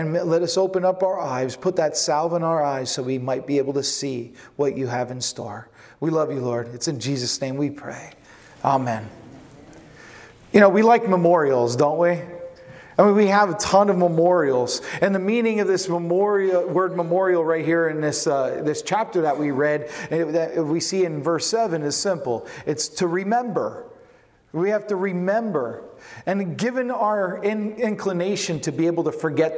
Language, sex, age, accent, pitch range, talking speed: English, male, 40-59, American, 150-225 Hz, 190 wpm